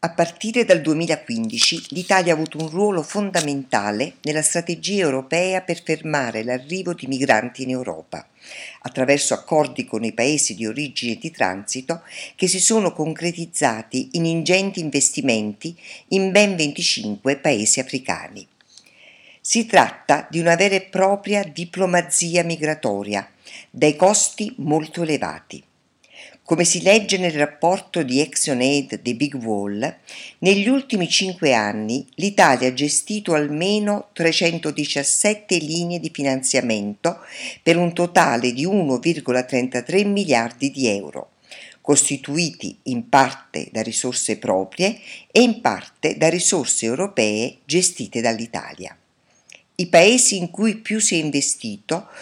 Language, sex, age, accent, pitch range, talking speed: Italian, female, 50-69, native, 135-190 Hz, 125 wpm